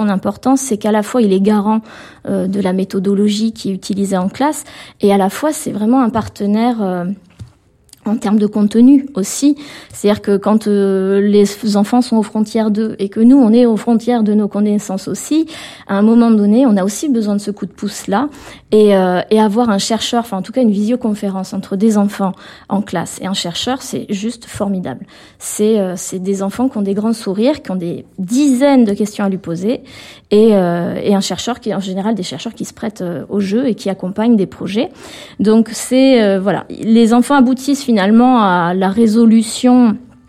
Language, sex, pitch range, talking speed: French, female, 195-235 Hz, 210 wpm